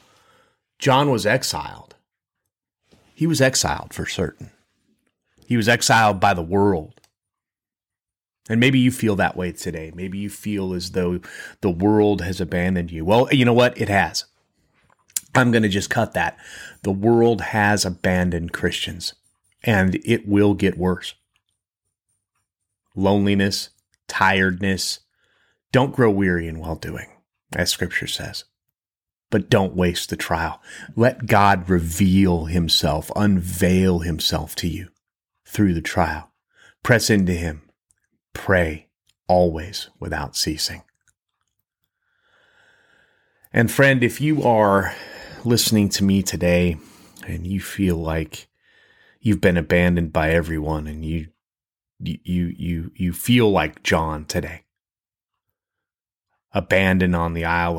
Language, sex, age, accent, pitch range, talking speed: English, male, 30-49, American, 85-105 Hz, 125 wpm